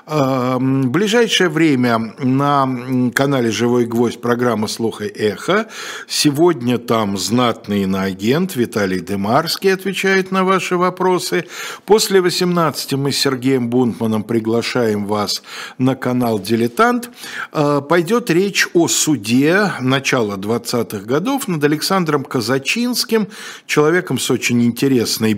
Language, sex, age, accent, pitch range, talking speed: Russian, male, 50-69, native, 115-175 Hz, 110 wpm